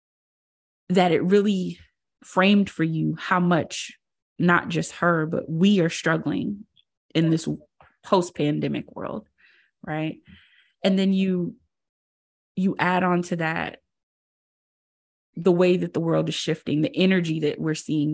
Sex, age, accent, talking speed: female, 20-39, American, 135 wpm